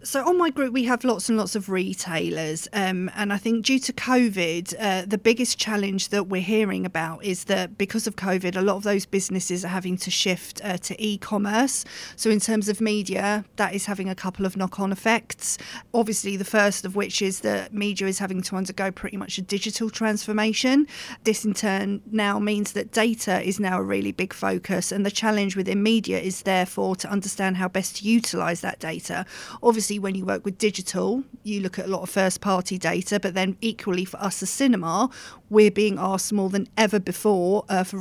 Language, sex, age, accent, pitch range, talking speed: English, female, 40-59, British, 185-215 Hz, 210 wpm